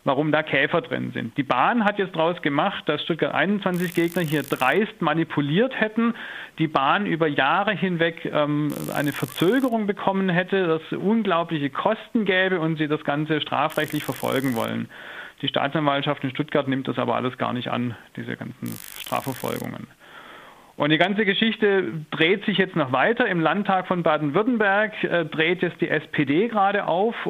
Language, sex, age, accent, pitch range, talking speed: German, male, 40-59, German, 150-190 Hz, 165 wpm